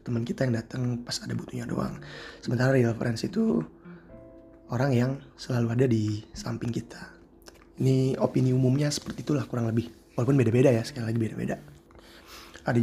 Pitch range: 110-130 Hz